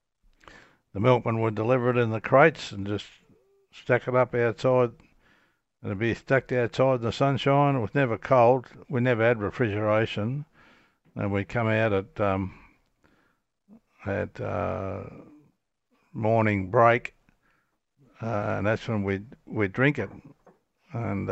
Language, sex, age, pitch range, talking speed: English, male, 60-79, 105-125 Hz, 140 wpm